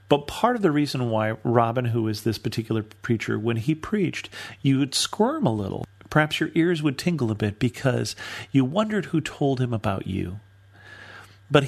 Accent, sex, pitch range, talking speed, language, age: American, male, 110-140 Hz, 185 wpm, English, 40-59